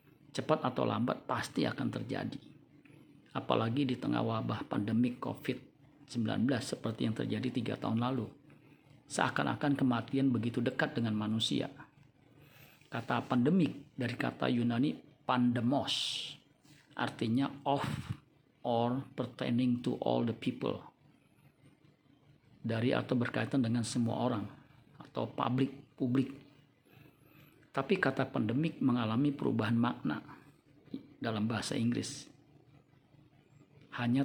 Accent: native